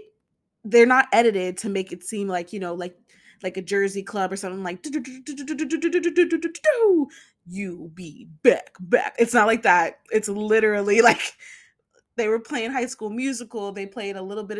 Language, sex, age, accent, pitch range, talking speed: English, female, 20-39, American, 185-240 Hz, 165 wpm